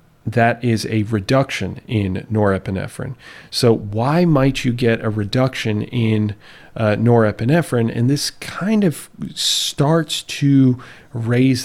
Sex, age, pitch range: male, 40-59, 100-125 Hz